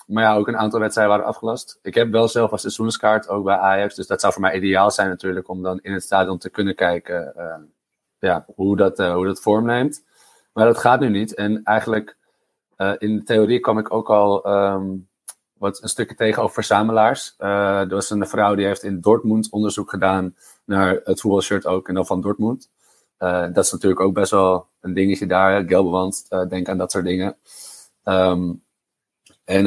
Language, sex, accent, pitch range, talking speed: Dutch, male, Dutch, 95-105 Hz, 200 wpm